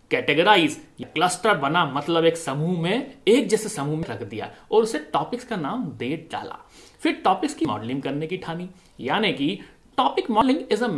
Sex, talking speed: male, 75 wpm